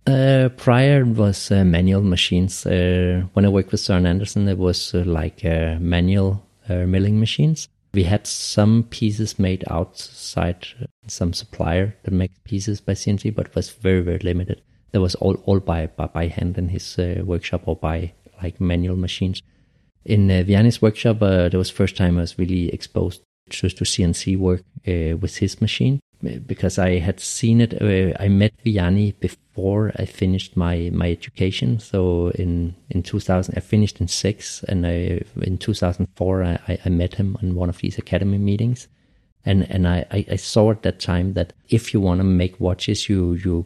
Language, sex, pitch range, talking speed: English, male, 90-105 Hz, 190 wpm